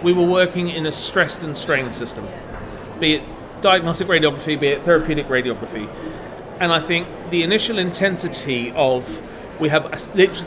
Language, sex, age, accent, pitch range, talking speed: English, male, 40-59, British, 140-180 Hz, 155 wpm